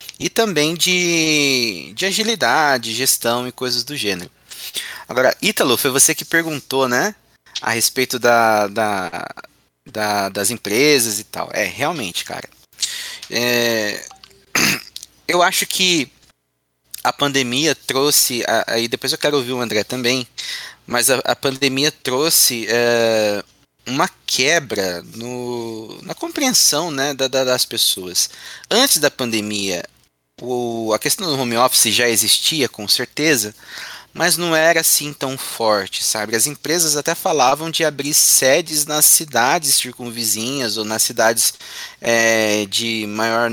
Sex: male